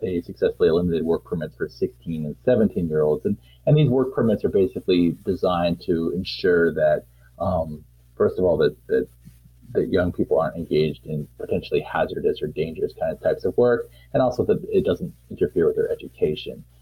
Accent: American